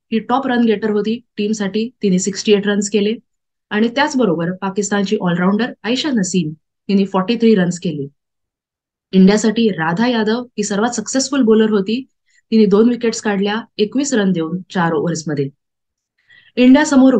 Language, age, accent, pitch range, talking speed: Marathi, 20-39, native, 185-225 Hz, 100 wpm